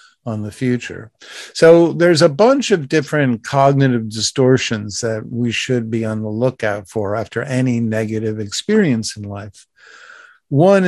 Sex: male